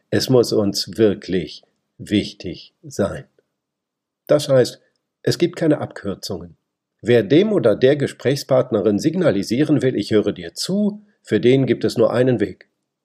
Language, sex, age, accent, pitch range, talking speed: German, male, 50-69, German, 105-155 Hz, 140 wpm